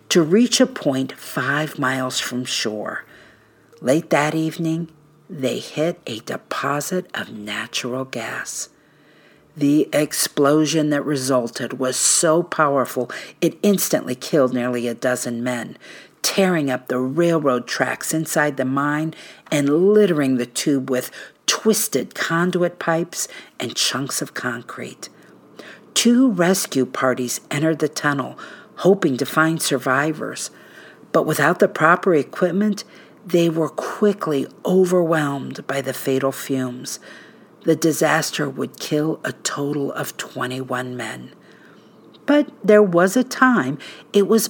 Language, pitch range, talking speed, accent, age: English, 135-180 Hz, 125 wpm, American, 50-69